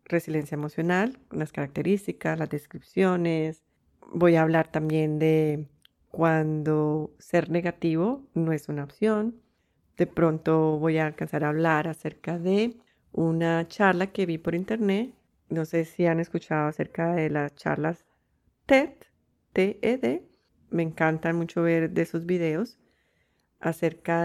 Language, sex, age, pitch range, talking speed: Spanish, female, 40-59, 155-190 Hz, 130 wpm